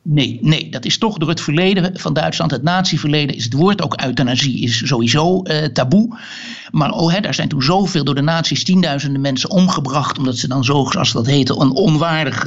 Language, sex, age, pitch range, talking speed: Dutch, male, 60-79, 140-195 Hz, 210 wpm